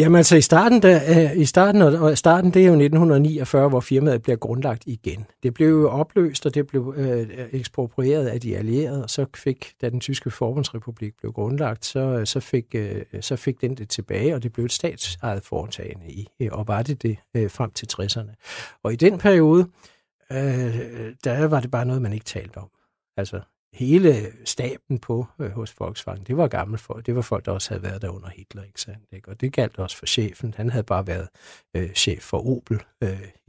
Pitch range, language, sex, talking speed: 110-140 Hz, Danish, male, 205 wpm